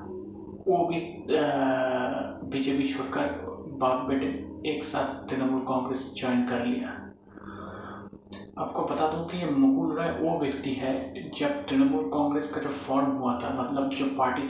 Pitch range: 130-150 Hz